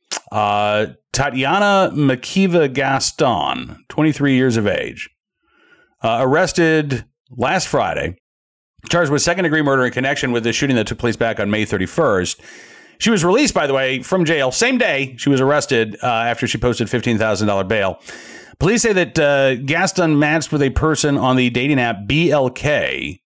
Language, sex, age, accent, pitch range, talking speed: English, male, 40-59, American, 115-150 Hz, 160 wpm